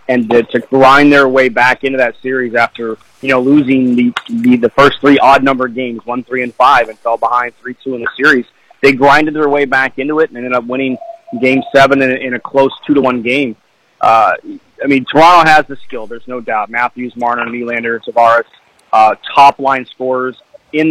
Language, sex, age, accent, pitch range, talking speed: English, male, 30-49, American, 125-145 Hz, 205 wpm